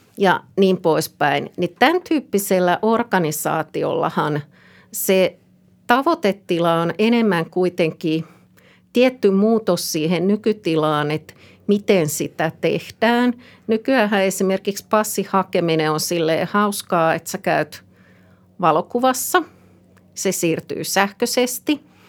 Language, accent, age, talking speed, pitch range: Finnish, native, 50-69, 90 wpm, 165-205 Hz